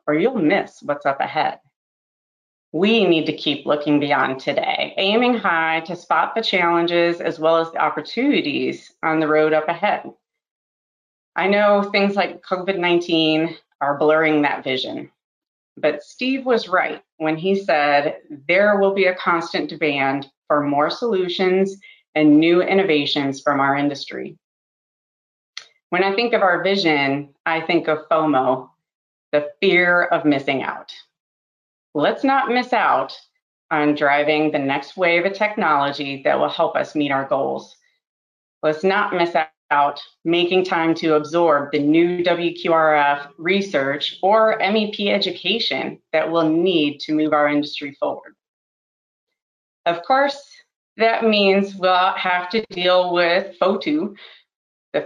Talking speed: 140 wpm